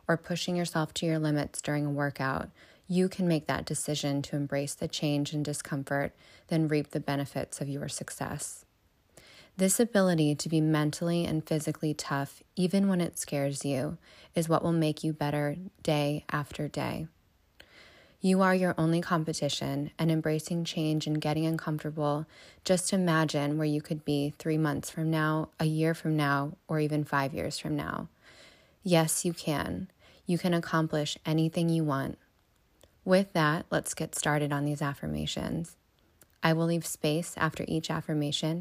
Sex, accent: female, American